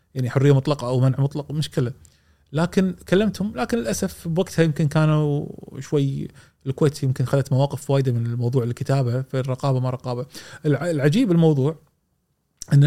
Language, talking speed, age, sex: Arabic, 140 wpm, 30-49, male